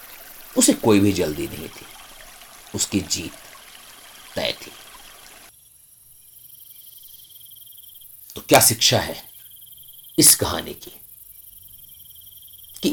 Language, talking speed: Hindi, 85 wpm